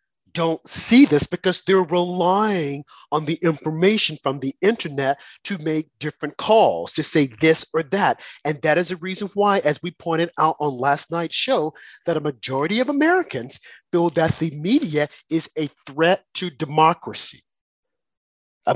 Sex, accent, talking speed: male, American, 160 wpm